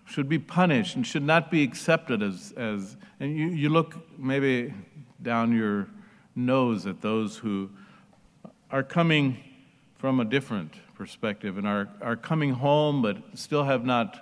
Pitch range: 115-165 Hz